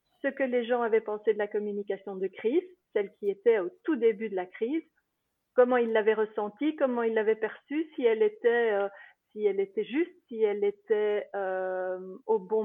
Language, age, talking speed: French, 40-59, 200 wpm